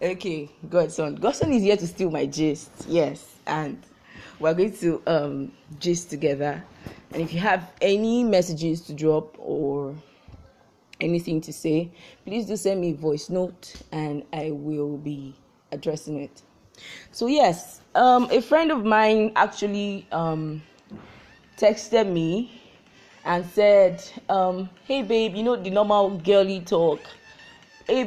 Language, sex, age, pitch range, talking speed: English, female, 20-39, 155-205 Hz, 140 wpm